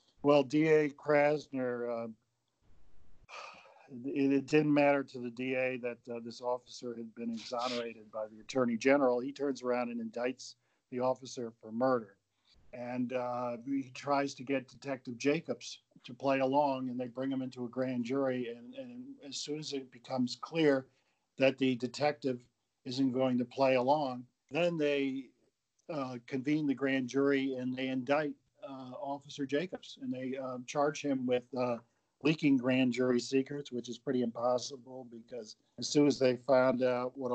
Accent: American